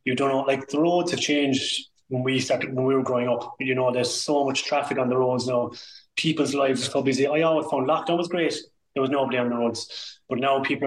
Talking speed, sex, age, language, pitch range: 255 wpm, male, 20-39, English, 125-145 Hz